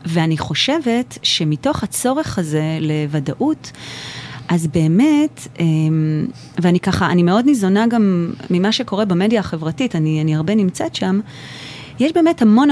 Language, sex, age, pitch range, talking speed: Hebrew, female, 30-49, 170-240 Hz, 125 wpm